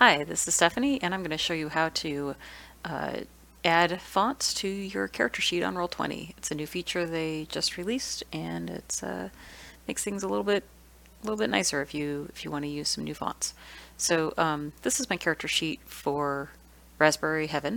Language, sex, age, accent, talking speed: English, female, 30-49, American, 205 wpm